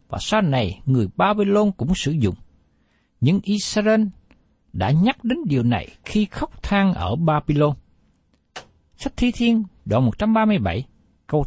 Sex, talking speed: male, 135 wpm